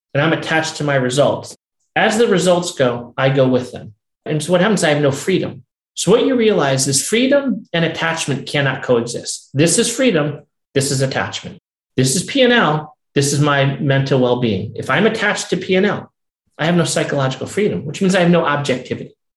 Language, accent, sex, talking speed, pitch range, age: English, American, male, 195 wpm, 130-170 Hz, 40-59